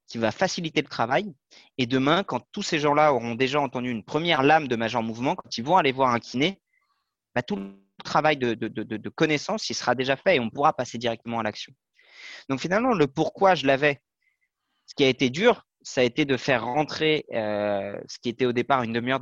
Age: 20-39